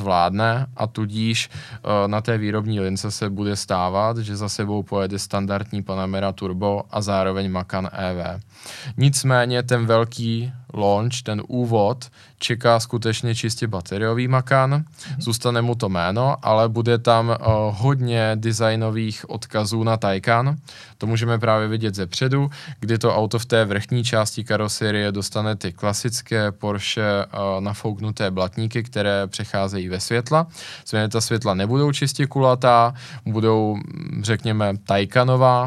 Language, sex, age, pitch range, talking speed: Czech, male, 20-39, 105-120 Hz, 135 wpm